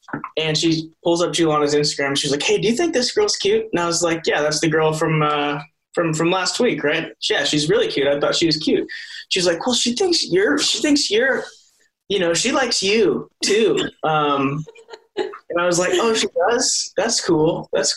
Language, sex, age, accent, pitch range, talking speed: English, male, 20-39, American, 145-195 Hz, 215 wpm